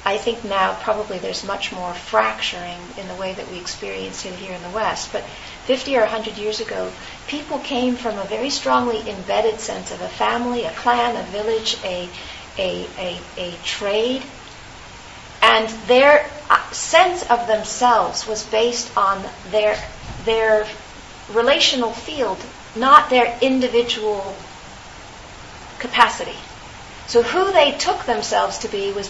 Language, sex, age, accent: English, female, 40-59, American